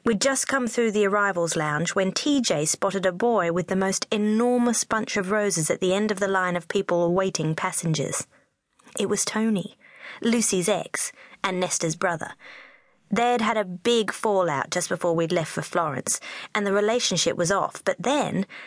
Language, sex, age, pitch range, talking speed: English, female, 20-39, 175-235 Hz, 175 wpm